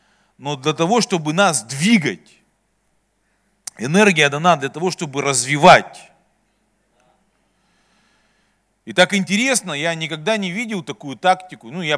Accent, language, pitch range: native, Russian, 140-185 Hz